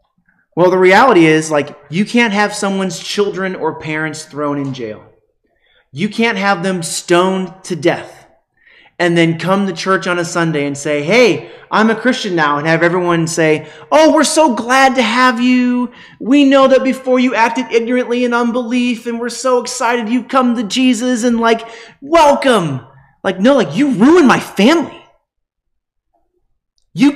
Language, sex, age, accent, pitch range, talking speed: English, male, 30-49, American, 150-240 Hz, 170 wpm